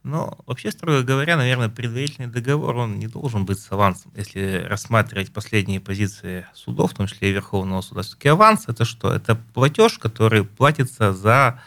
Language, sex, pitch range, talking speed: Russian, male, 100-135 Hz, 170 wpm